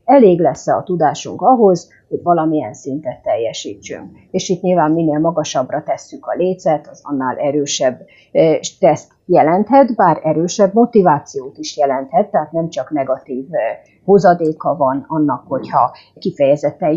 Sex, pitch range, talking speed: female, 155-225 Hz, 125 wpm